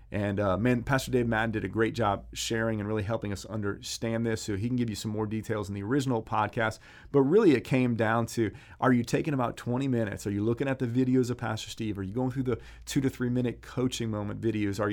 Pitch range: 110-130 Hz